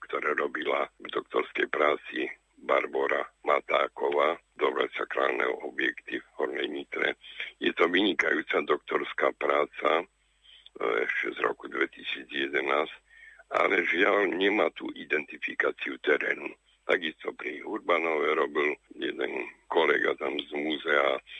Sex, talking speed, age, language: male, 105 wpm, 60-79, Slovak